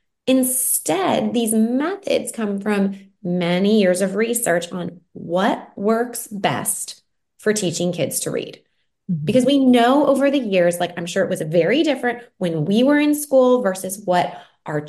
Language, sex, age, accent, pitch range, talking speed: English, female, 20-39, American, 185-255 Hz, 155 wpm